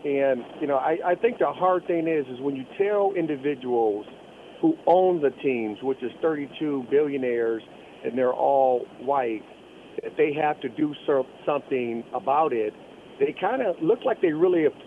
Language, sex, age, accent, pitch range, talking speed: English, male, 50-69, American, 125-165 Hz, 175 wpm